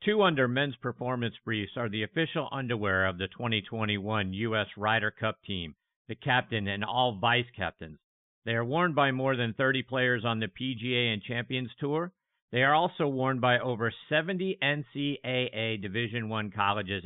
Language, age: English, 50-69